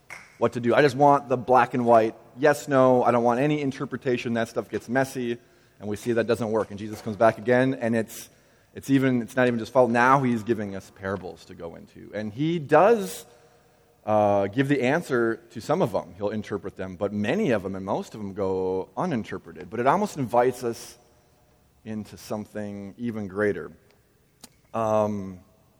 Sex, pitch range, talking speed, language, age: male, 105-125 Hz, 195 wpm, English, 30-49